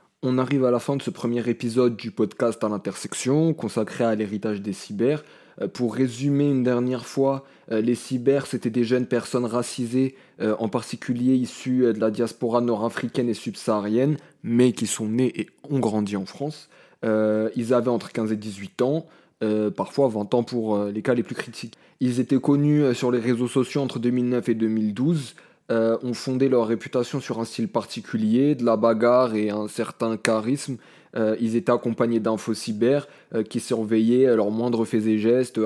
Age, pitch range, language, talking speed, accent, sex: 20-39, 110-130 Hz, French, 195 wpm, French, male